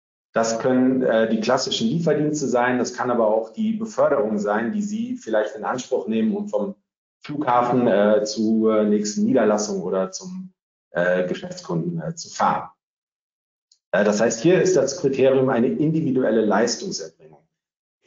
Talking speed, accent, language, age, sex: 145 wpm, German, German, 40-59, male